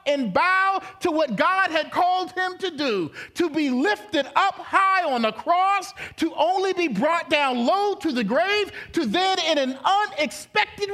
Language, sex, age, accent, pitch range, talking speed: English, male, 40-59, American, 290-395 Hz, 175 wpm